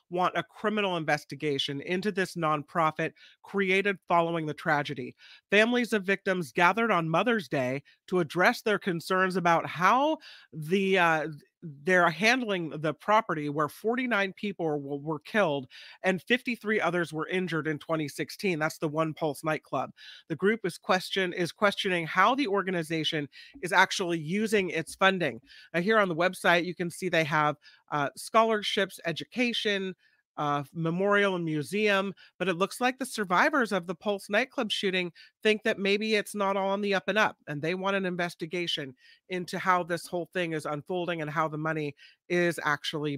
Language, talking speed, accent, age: English, 165 wpm, American, 40-59